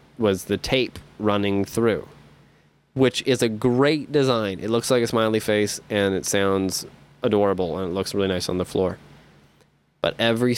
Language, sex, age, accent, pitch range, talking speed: English, male, 20-39, American, 100-130 Hz, 170 wpm